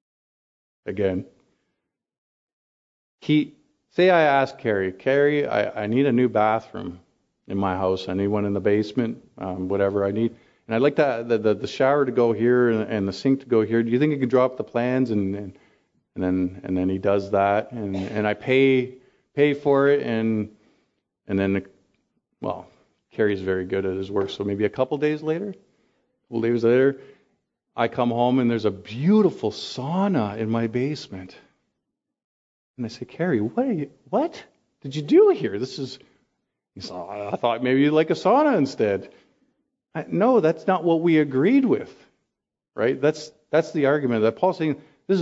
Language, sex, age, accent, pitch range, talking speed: English, male, 40-59, American, 105-155 Hz, 180 wpm